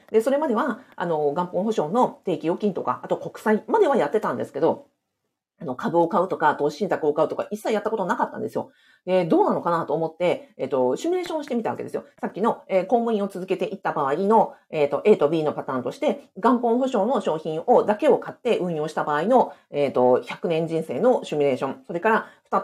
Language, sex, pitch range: Japanese, female, 170-285 Hz